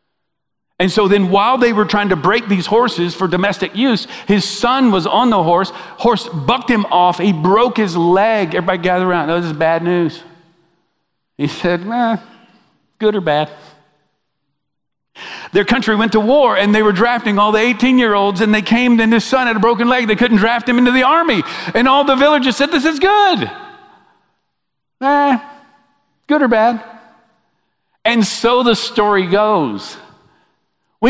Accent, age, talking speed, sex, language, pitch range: American, 50-69, 170 wpm, male, English, 180-240 Hz